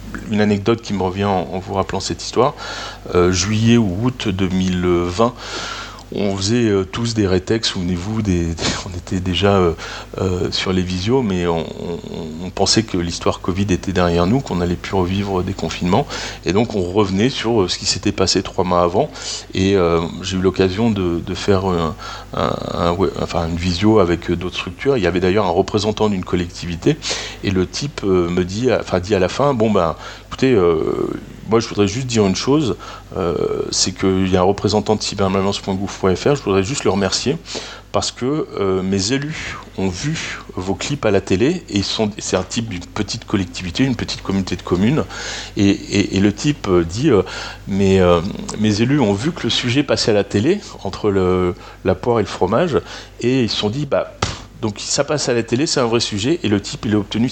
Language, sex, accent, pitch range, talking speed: French, male, French, 90-110 Hz, 205 wpm